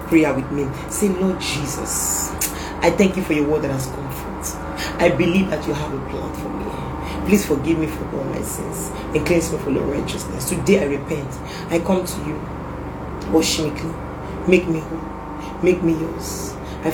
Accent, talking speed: Nigerian, 190 wpm